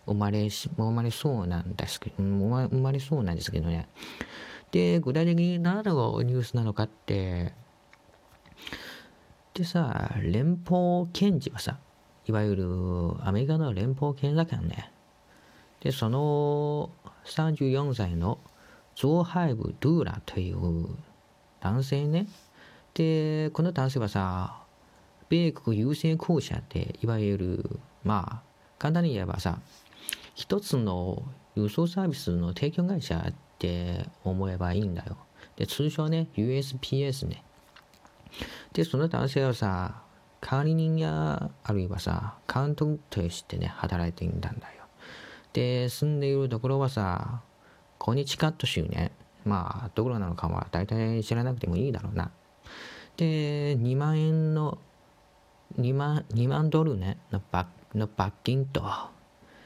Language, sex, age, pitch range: English, male, 40-59, 100-150 Hz